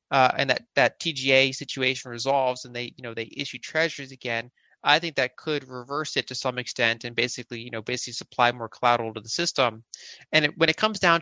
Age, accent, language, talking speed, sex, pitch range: 30-49, American, English, 220 wpm, male, 125-145 Hz